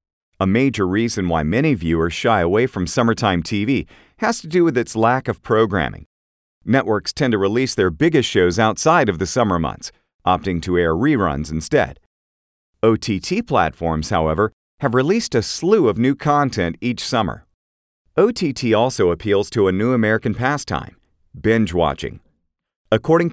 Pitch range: 85-120 Hz